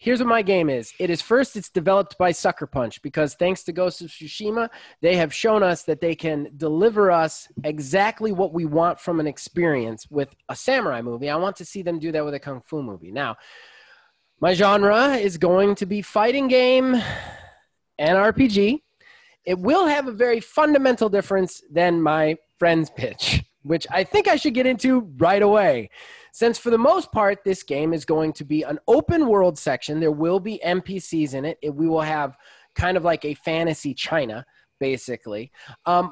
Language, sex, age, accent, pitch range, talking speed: English, male, 20-39, American, 155-215 Hz, 190 wpm